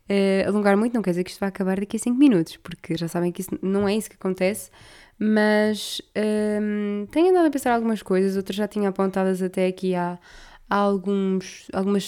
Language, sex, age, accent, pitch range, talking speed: Portuguese, female, 20-39, Brazilian, 185-225 Hz, 195 wpm